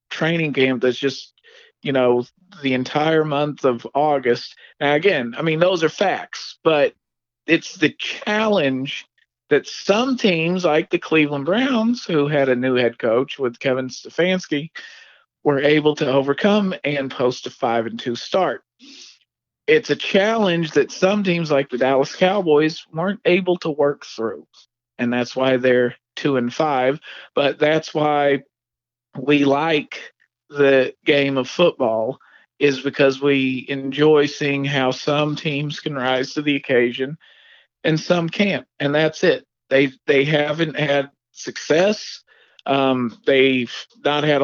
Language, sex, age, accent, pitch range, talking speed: English, male, 40-59, American, 130-165 Hz, 145 wpm